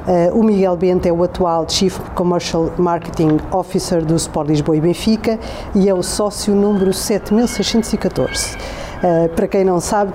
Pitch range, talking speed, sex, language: 165-200 Hz, 160 wpm, female, Portuguese